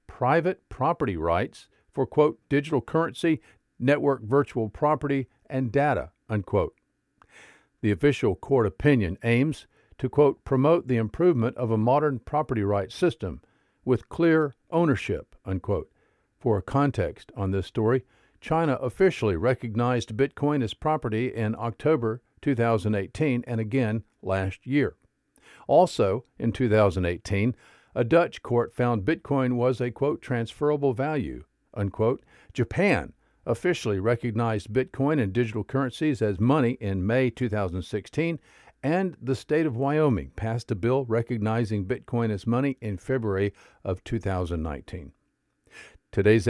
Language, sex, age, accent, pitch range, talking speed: English, male, 50-69, American, 105-140 Hz, 120 wpm